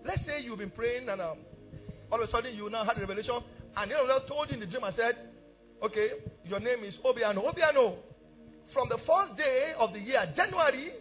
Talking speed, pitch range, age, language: 215 wpm, 190-280 Hz, 50-69, English